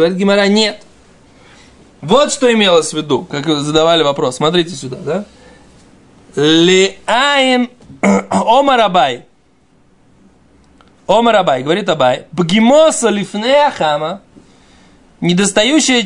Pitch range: 165-230 Hz